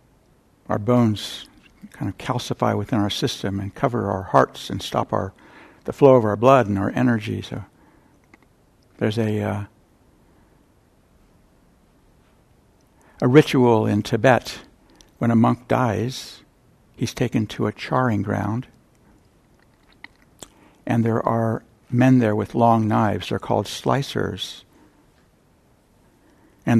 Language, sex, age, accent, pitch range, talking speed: English, male, 60-79, American, 105-125 Hz, 120 wpm